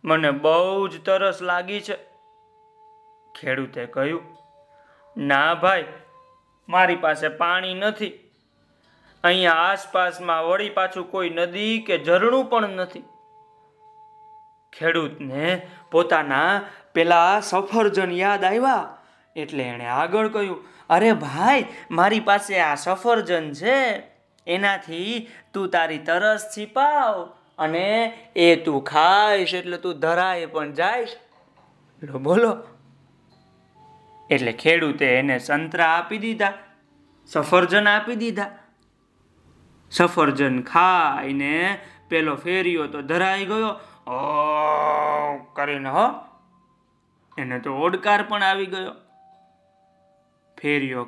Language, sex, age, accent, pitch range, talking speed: Gujarati, male, 30-49, native, 155-210 Hz, 80 wpm